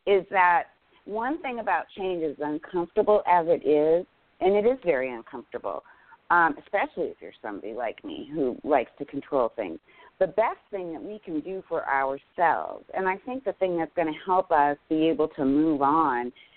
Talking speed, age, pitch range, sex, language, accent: 190 wpm, 40-59, 150-190 Hz, female, English, American